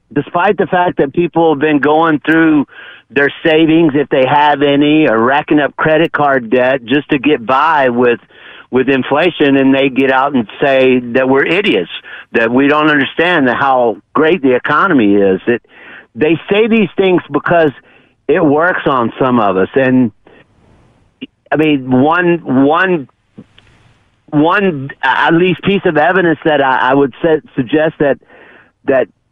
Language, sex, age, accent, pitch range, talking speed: English, male, 50-69, American, 135-165 Hz, 155 wpm